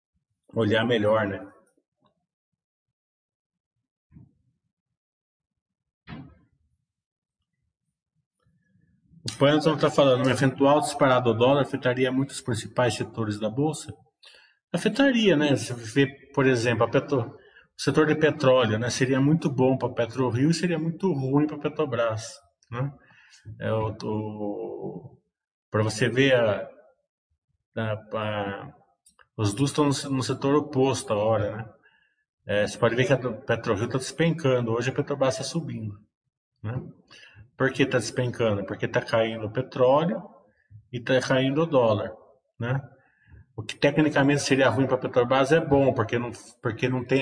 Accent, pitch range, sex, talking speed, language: Brazilian, 110-135 Hz, male, 135 wpm, Portuguese